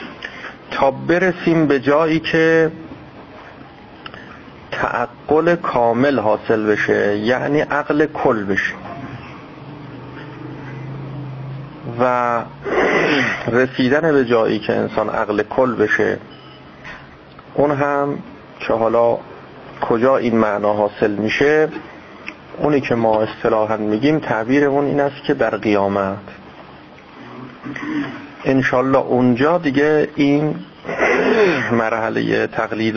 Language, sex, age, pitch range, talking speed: Persian, male, 40-59, 115-145 Hz, 85 wpm